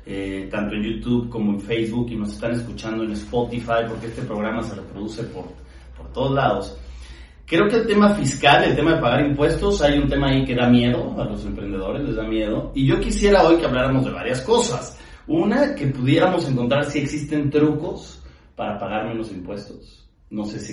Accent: Mexican